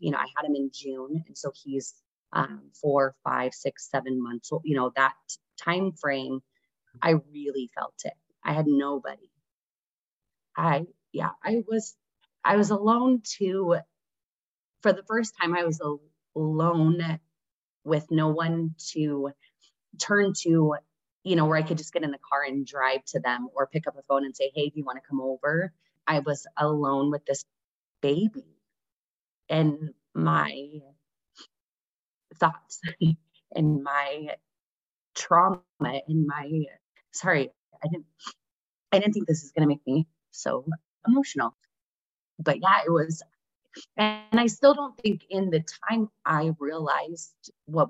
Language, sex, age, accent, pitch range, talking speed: English, female, 30-49, American, 140-170 Hz, 150 wpm